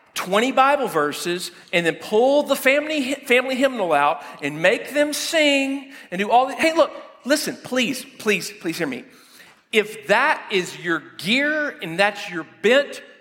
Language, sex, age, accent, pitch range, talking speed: English, male, 40-59, American, 195-270 Hz, 165 wpm